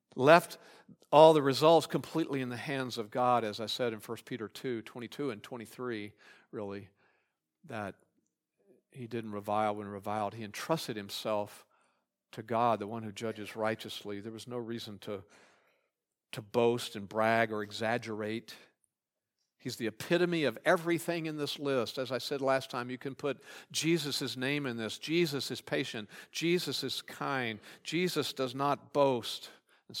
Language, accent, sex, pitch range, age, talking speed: English, American, male, 110-145 Hz, 50-69, 160 wpm